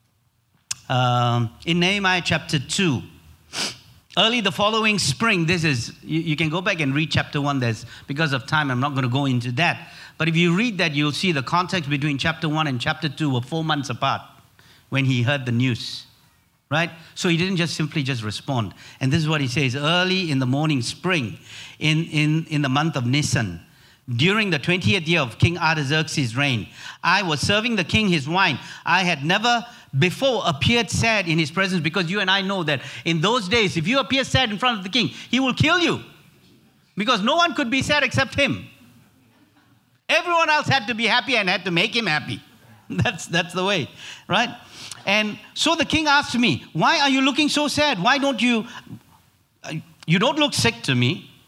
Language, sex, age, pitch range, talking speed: English, male, 50-69, 135-200 Hz, 200 wpm